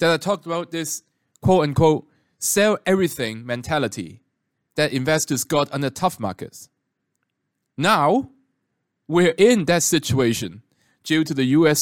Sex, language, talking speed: male, English, 115 wpm